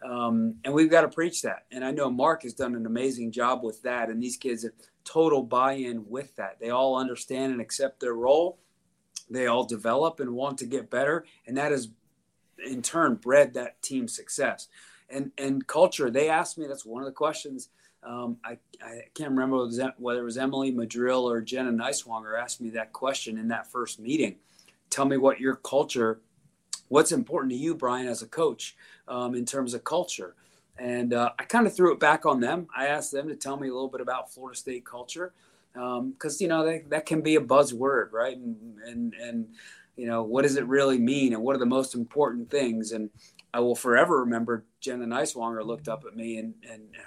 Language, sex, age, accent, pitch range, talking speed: English, male, 30-49, American, 120-140 Hz, 210 wpm